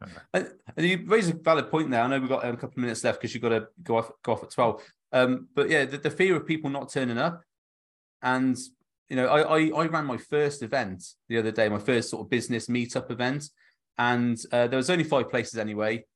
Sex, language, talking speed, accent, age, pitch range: male, English, 240 wpm, British, 30-49, 115-145 Hz